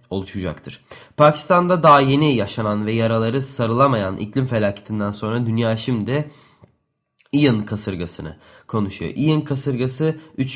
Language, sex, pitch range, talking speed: Turkish, male, 110-135 Hz, 110 wpm